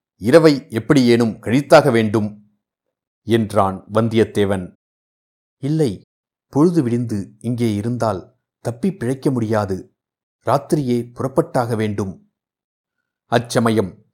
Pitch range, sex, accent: 105-130 Hz, male, native